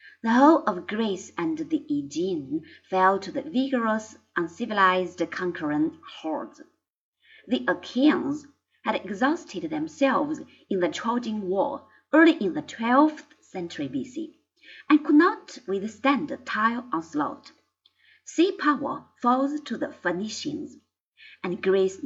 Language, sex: Chinese, female